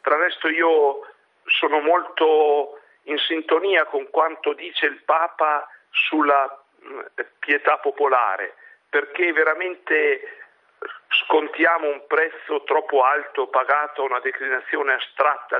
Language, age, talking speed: Italian, 50-69, 105 wpm